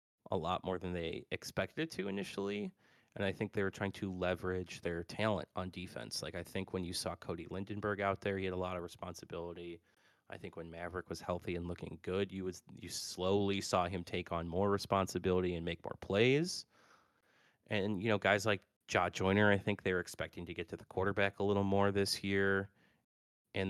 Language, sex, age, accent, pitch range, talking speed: English, male, 30-49, American, 85-100 Hz, 215 wpm